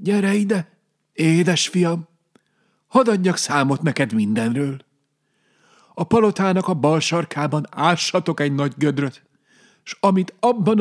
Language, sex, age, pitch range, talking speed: Hungarian, male, 40-59, 125-190 Hz, 115 wpm